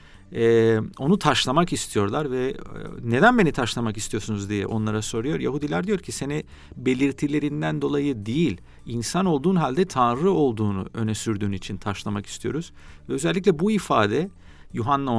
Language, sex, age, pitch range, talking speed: Turkish, male, 40-59, 105-150 Hz, 135 wpm